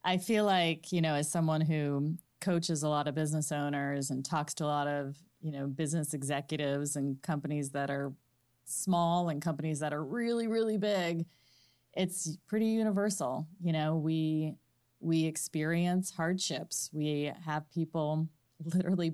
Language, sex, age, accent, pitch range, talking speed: English, female, 30-49, American, 145-170 Hz, 155 wpm